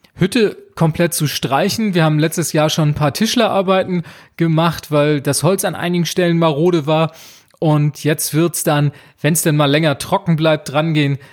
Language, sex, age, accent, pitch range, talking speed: German, male, 30-49, German, 145-175 Hz, 180 wpm